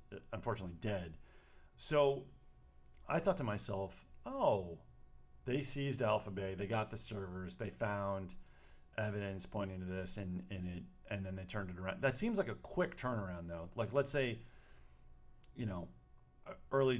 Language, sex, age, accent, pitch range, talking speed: English, male, 40-59, American, 85-125 Hz, 160 wpm